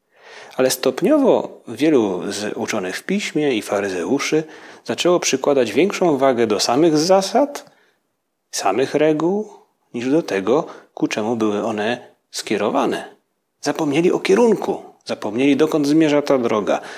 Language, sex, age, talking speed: Polish, male, 40-59, 120 wpm